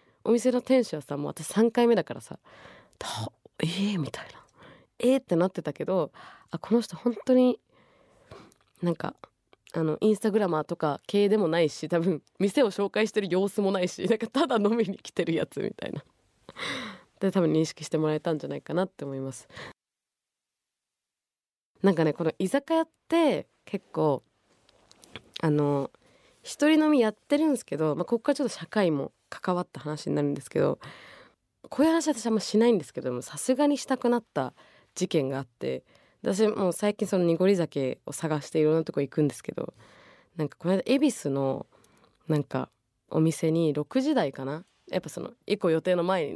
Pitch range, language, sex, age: 150-225 Hz, Japanese, female, 20-39